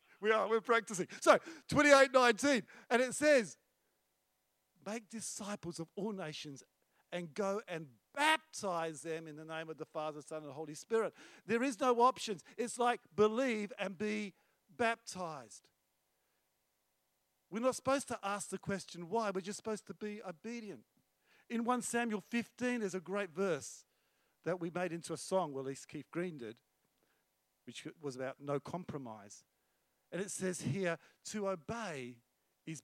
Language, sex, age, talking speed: English, male, 50-69, 160 wpm